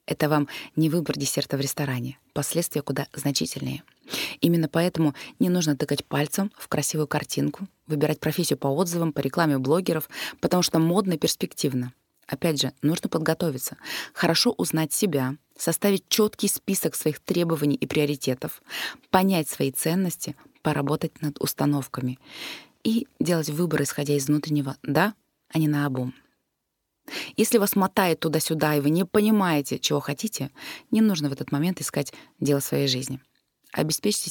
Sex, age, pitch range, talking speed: female, 20-39, 145-175 Hz, 145 wpm